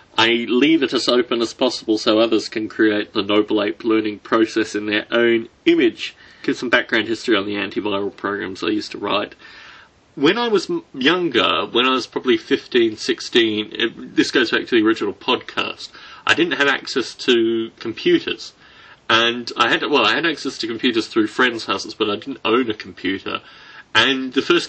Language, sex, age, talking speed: English, male, 30-49, 180 wpm